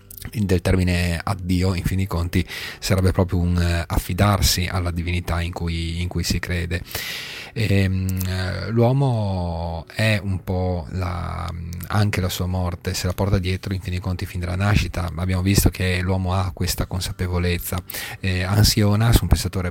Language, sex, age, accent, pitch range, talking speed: Italian, male, 30-49, native, 90-105 Hz, 155 wpm